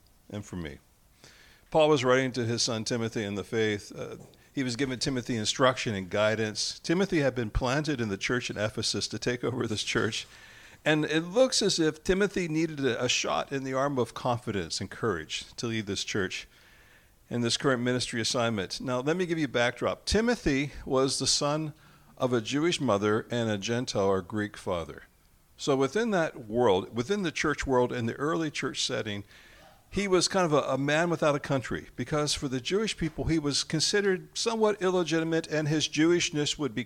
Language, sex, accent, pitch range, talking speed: English, male, American, 120-165 Hz, 195 wpm